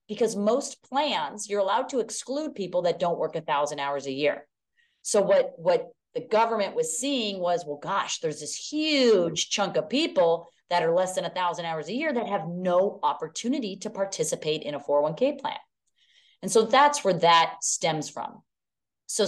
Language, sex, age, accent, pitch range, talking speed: English, female, 30-49, American, 150-215 Hz, 185 wpm